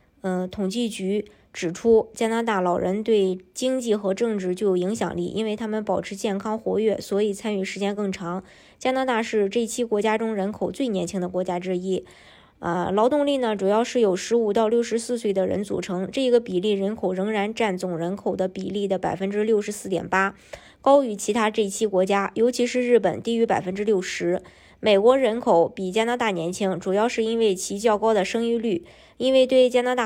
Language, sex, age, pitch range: Chinese, male, 20-39, 190-230 Hz